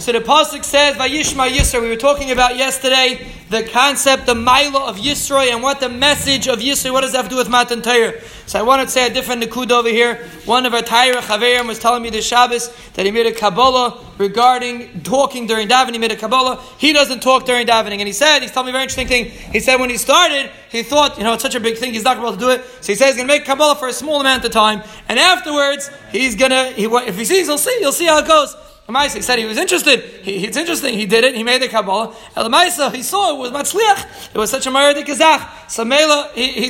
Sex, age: male, 30-49